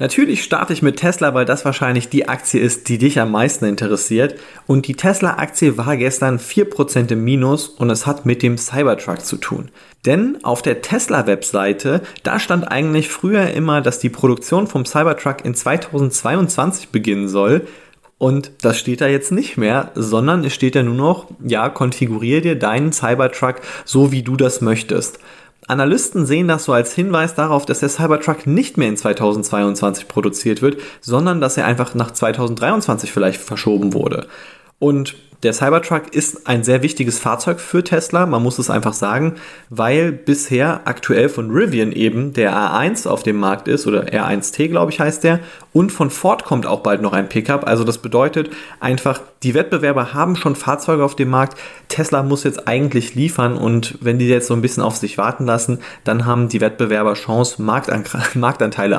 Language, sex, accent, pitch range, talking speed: German, male, German, 115-150 Hz, 180 wpm